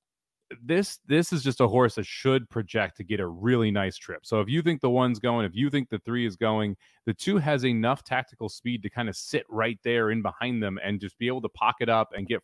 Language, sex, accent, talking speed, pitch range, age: English, male, American, 255 wpm, 100-125 Hz, 30-49